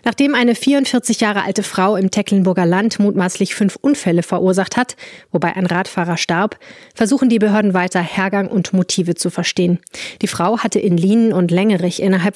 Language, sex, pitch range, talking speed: German, female, 180-215 Hz, 170 wpm